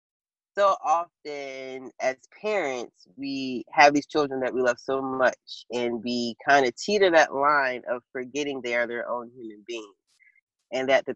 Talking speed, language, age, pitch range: 165 wpm, English, 20-39, 125-165 Hz